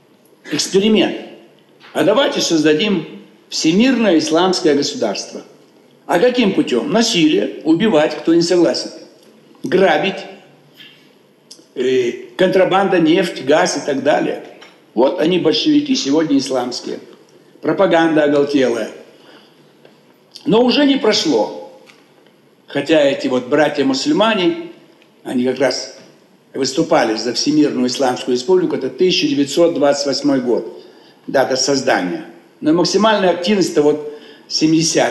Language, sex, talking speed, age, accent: Russian, male, 95 wpm, 60-79, native